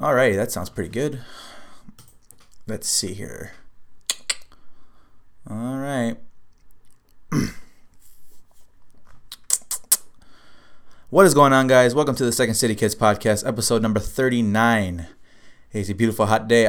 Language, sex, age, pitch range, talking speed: English, male, 20-39, 105-120 Hz, 110 wpm